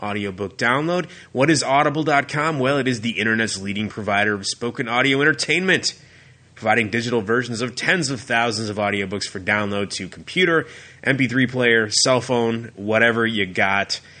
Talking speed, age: 150 wpm, 20-39